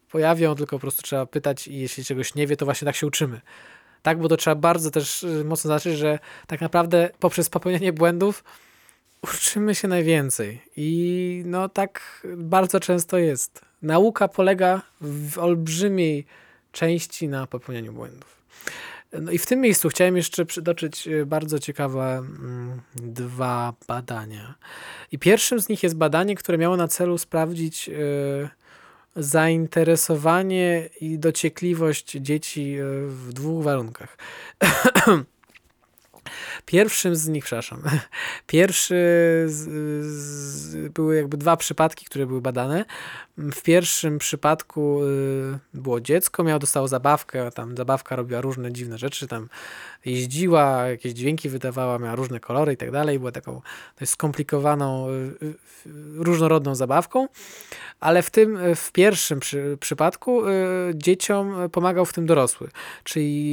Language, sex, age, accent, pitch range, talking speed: Polish, male, 20-39, native, 140-170 Hz, 130 wpm